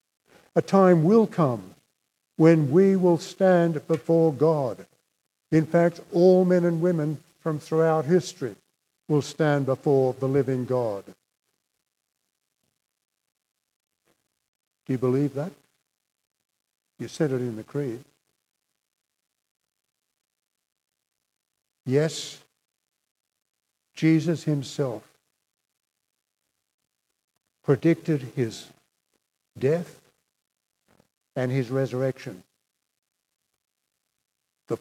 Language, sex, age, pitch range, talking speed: English, male, 60-79, 130-165 Hz, 80 wpm